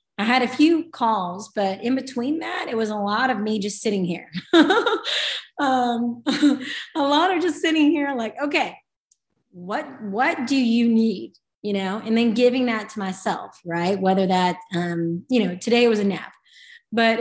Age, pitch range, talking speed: 30-49, 205-265 Hz, 180 wpm